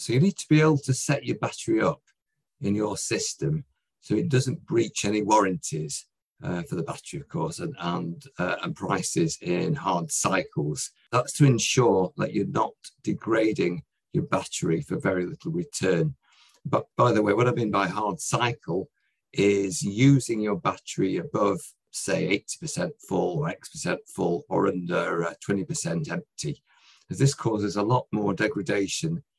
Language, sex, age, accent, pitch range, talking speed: English, male, 50-69, British, 100-155 Hz, 165 wpm